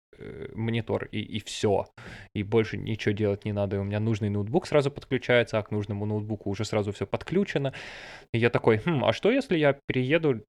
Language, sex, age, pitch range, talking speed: Russian, male, 20-39, 105-120 Hz, 190 wpm